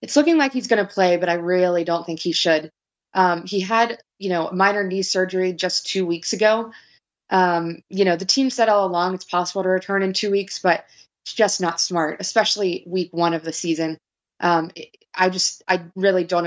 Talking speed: 210 wpm